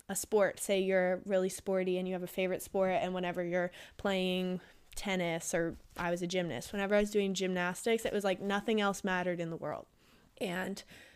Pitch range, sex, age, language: 185-215 Hz, female, 20-39, English